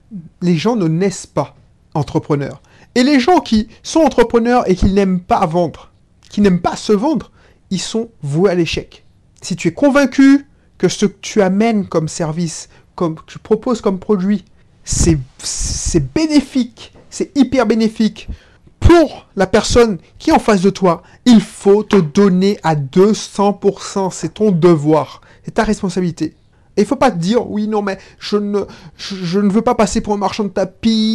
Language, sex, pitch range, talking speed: French, male, 170-225 Hz, 175 wpm